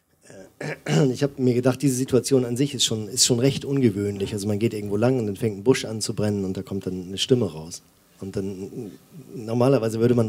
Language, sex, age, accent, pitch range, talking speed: German, male, 40-59, German, 95-130 Hz, 225 wpm